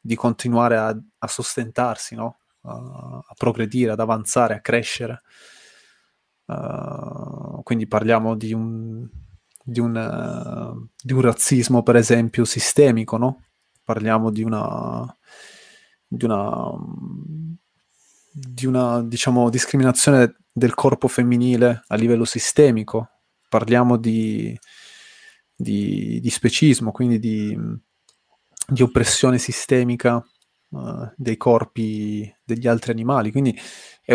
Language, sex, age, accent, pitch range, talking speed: Italian, male, 20-39, native, 115-130 Hz, 105 wpm